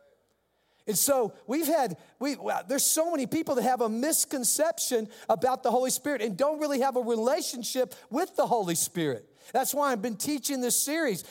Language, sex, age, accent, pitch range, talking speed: English, male, 50-69, American, 225-275 Hz, 180 wpm